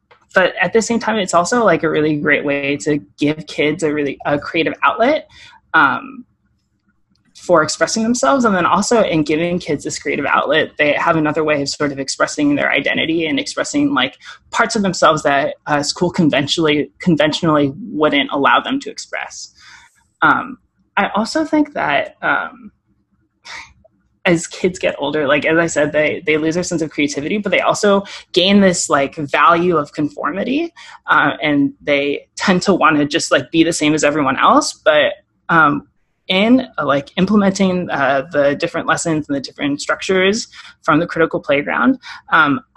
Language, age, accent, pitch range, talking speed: English, 20-39, American, 150-220 Hz, 175 wpm